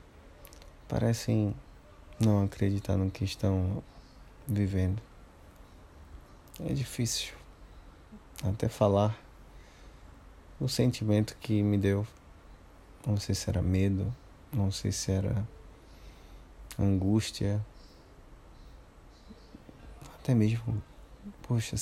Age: 20-39